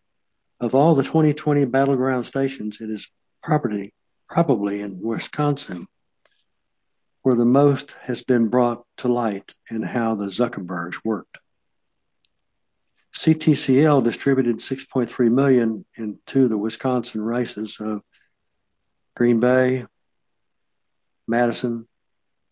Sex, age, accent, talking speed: male, 60-79, American, 100 wpm